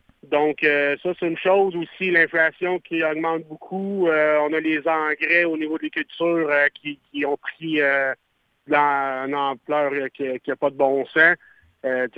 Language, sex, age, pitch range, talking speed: French, male, 50-69, 140-160 Hz, 170 wpm